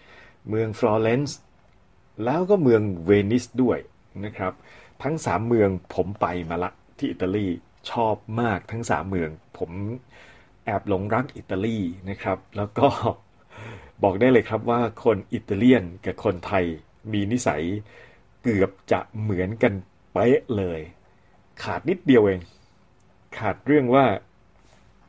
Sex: male